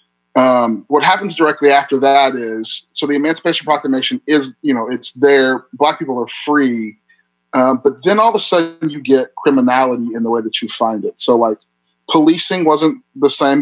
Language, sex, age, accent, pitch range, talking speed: English, male, 30-49, American, 110-145 Hz, 190 wpm